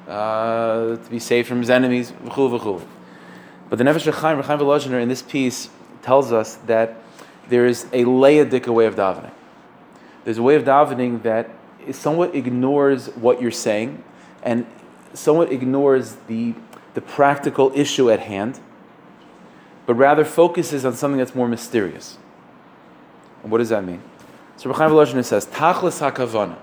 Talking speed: 150 wpm